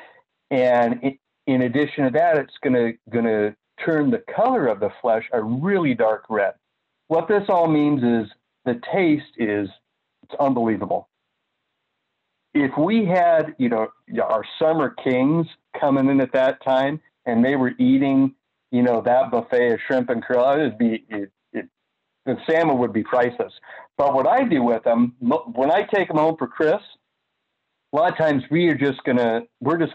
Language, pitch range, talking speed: English, 120-160 Hz, 175 wpm